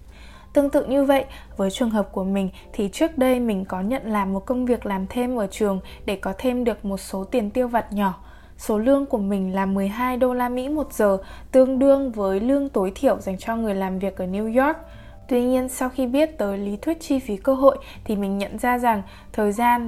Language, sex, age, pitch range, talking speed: Vietnamese, female, 20-39, 195-255 Hz, 230 wpm